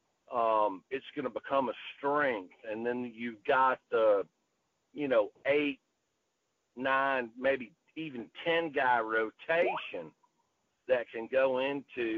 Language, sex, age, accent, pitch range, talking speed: English, male, 50-69, American, 115-170 Hz, 120 wpm